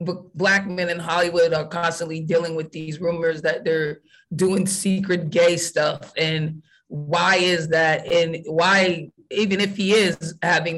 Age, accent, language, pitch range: 20-39, American, English, 165-185 Hz